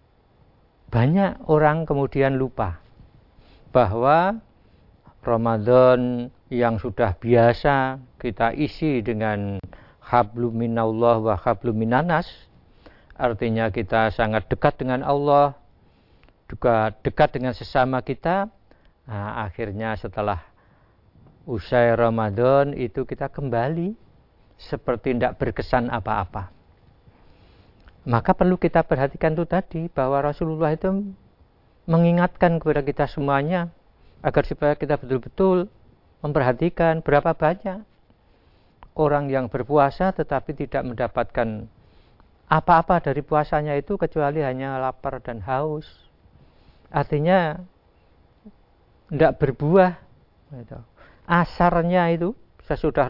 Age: 50-69